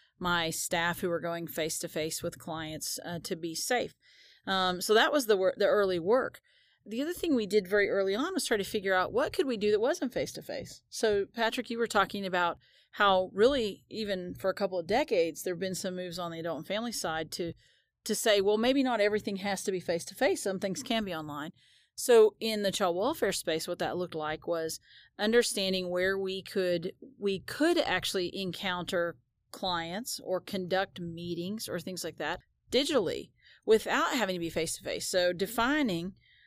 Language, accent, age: English, American, 40-59